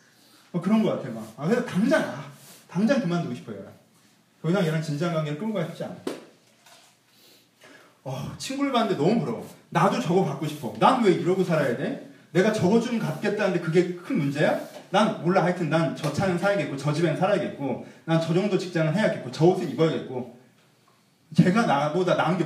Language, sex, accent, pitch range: Korean, male, native, 160-215 Hz